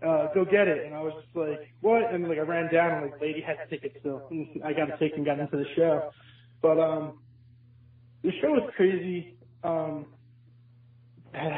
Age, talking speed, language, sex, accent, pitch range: 20-39, 200 wpm, English, male, American, 140-165 Hz